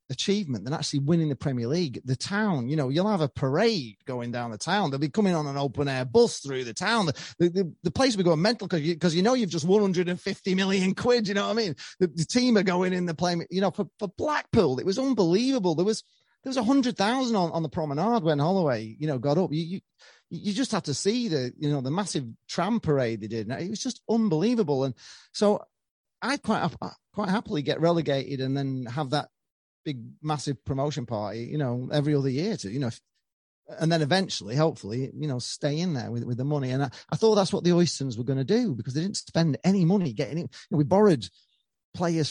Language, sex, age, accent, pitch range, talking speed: English, male, 30-49, British, 135-195 Hz, 235 wpm